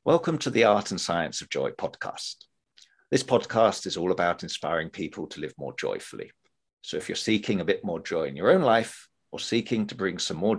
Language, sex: English, male